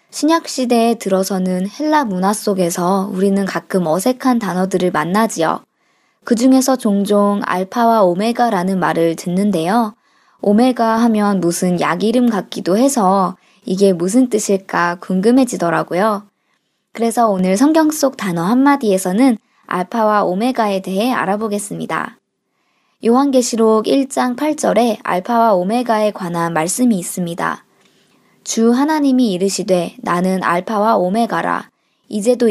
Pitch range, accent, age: 185-245 Hz, native, 20-39